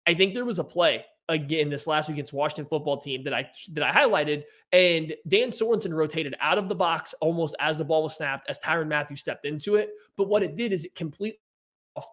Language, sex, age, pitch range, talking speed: English, male, 20-39, 145-170 Hz, 230 wpm